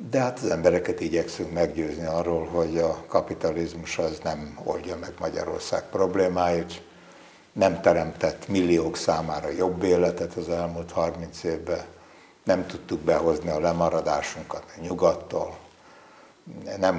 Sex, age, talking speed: male, 60-79, 120 wpm